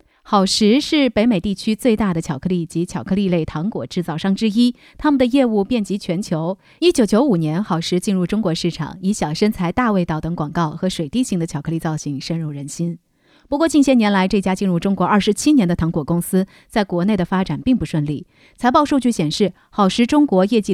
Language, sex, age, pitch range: Chinese, female, 30-49, 165-235 Hz